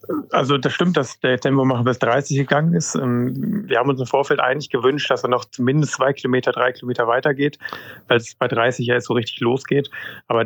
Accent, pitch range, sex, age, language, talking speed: German, 120-140 Hz, male, 30-49, German, 205 wpm